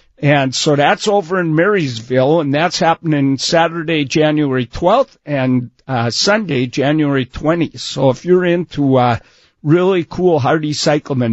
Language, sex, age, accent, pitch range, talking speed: English, male, 50-69, American, 135-175 Hz, 140 wpm